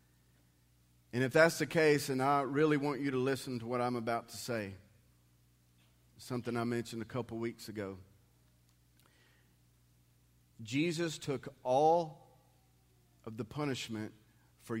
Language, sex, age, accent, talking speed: English, male, 40-59, American, 130 wpm